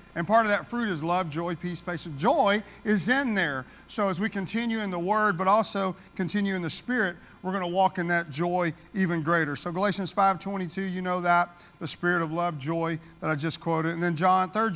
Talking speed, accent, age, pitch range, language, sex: 230 wpm, American, 40-59, 170-200 Hz, English, male